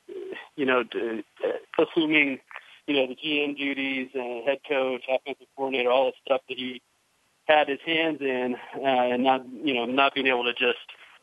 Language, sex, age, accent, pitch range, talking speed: English, male, 30-49, American, 125-140 Hz, 170 wpm